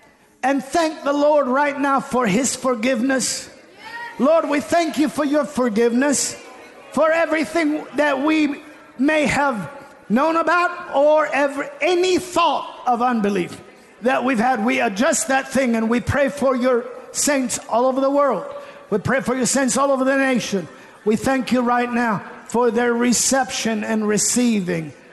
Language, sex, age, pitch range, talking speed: English, male, 50-69, 230-275 Hz, 155 wpm